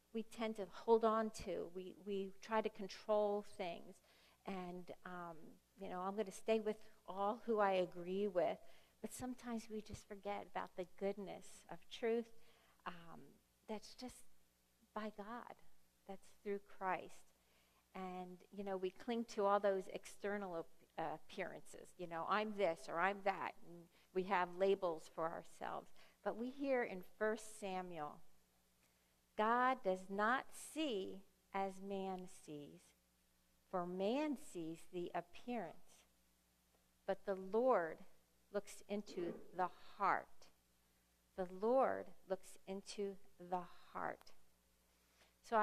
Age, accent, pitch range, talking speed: 50-69, American, 175-215 Hz, 135 wpm